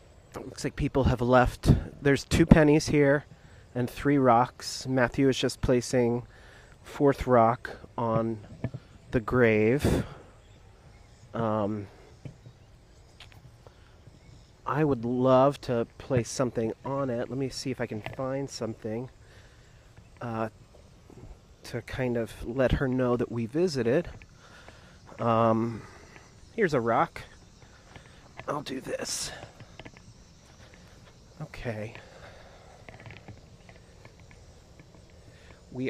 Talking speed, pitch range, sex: 95 wpm, 110-130 Hz, male